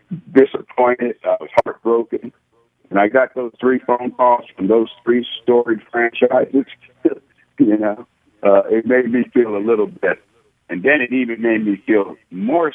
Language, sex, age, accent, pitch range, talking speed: English, male, 60-79, American, 90-125 Hz, 160 wpm